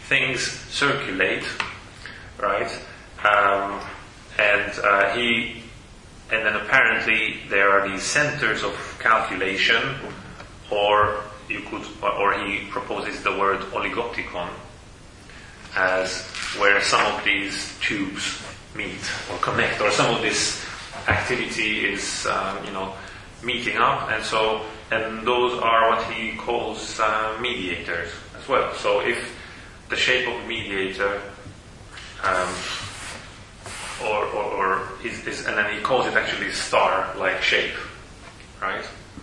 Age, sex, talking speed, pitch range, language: 30-49, male, 120 wpm, 95-110 Hz, English